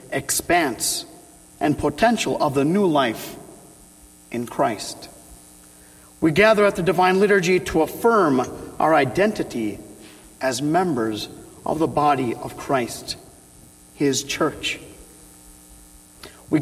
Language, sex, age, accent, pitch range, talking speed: English, male, 50-69, American, 120-195 Hz, 105 wpm